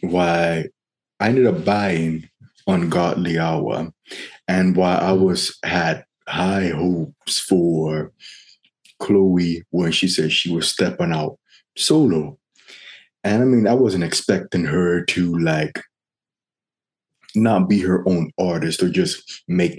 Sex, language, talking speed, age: male, English, 125 wpm, 20-39